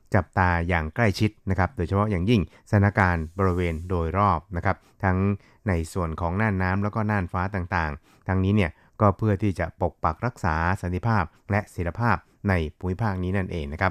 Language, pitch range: Thai, 85-105 Hz